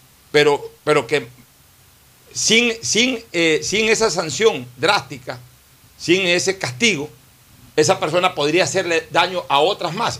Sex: male